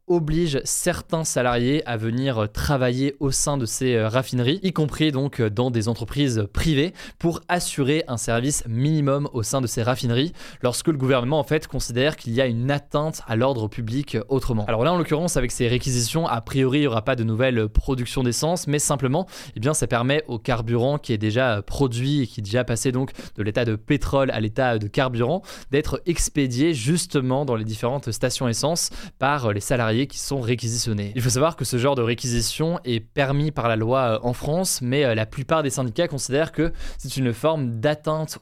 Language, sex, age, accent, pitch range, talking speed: French, male, 20-39, French, 120-150 Hz, 195 wpm